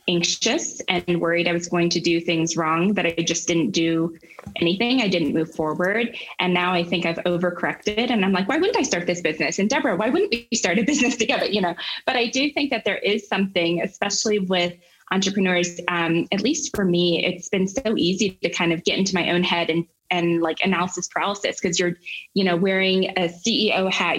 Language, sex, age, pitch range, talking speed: English, female, 20-39, 170-195 Hz, 215 wpm